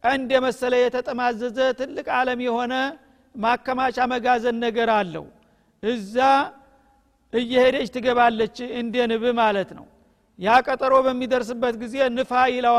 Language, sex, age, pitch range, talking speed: Amharic, male, 50-69, 240-260 Hz, 90 wpm